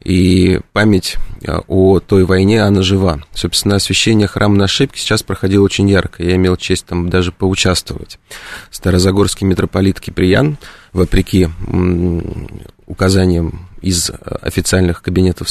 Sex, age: male, 20-39